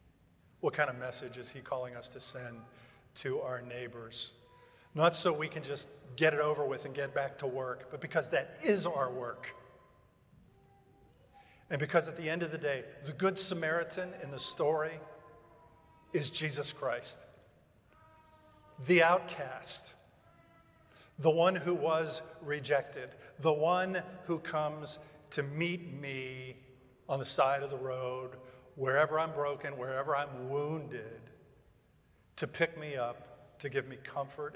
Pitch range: 125-150 Hz